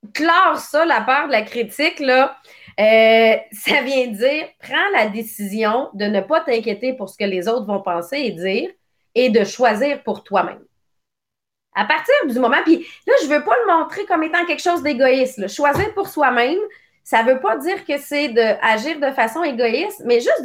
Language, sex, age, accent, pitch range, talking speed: English, female, 30-49, Canadian, 220-315 Hz, 190 wpm